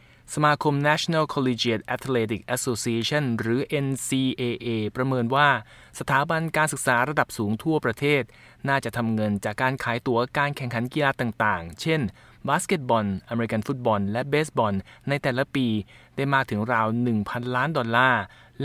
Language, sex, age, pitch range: Thai, male, 20-39, 115-145 Hz